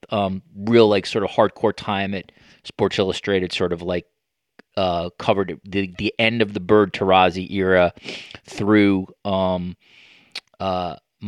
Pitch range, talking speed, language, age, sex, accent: 100-120 Hz, 140 wpm, English, 30-49, male, American